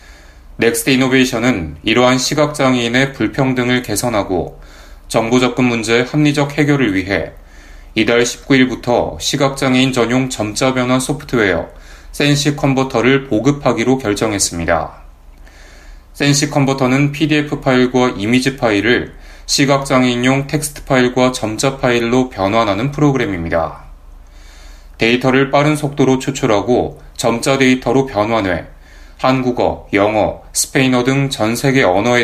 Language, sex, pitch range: Korean, male, 100-135 Hz